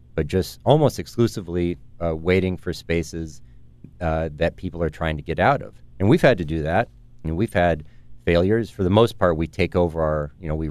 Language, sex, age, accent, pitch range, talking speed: English, male, 40-59, American, 75-95 Hz, 215 wpm